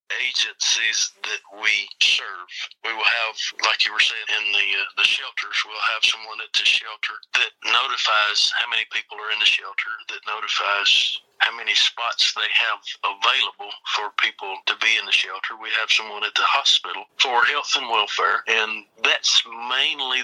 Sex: male